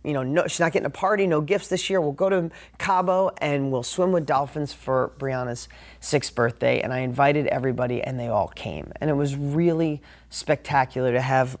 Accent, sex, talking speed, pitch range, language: American, male, 205 wpm, 125-150 Hz, English